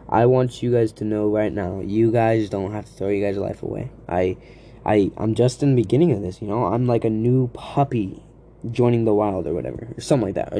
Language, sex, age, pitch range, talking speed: English, male, 10-29, 105-125 Hz, 265 wpm